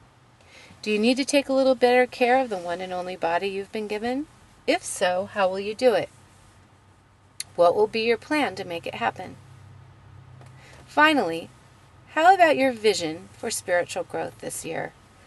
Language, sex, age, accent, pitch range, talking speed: English, female, 30-49, American, 170-245 Hz, 175 wpm